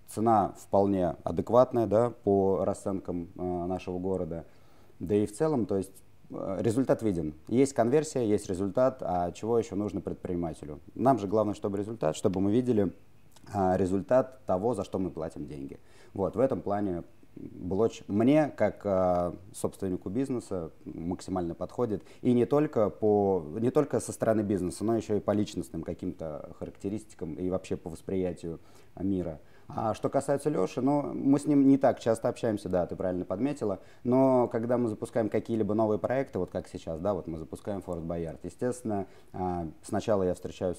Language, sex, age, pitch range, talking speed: Russian, male, 30-49, 90-120 Hz, 150 wpm